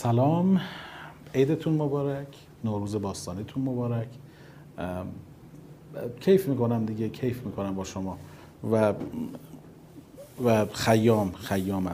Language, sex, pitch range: Persian, male, 110-155 Hz